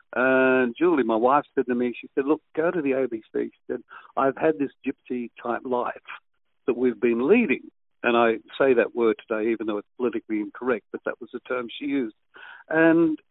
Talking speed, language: 205 wpm, English